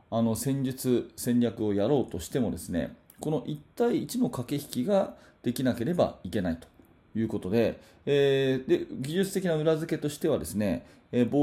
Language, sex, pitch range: Japanese, male, 105-160 Hz